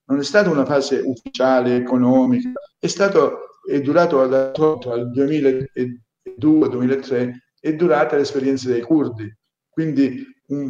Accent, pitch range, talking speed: native, 125-160 Hz, 110 wpm